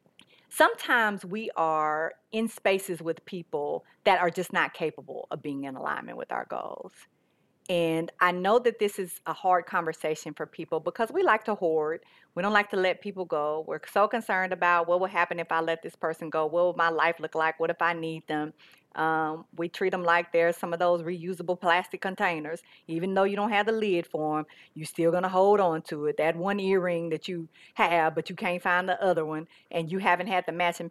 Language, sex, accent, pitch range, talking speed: English, female, American, 165-205 Hz, 220 wpm